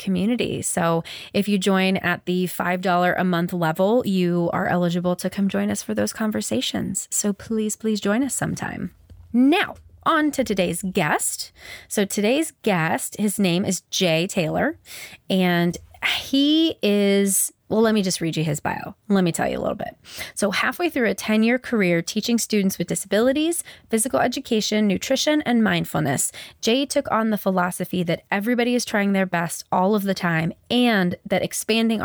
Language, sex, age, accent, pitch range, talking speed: English, female, 20-39, American, 180-225 Hz, 170 wpm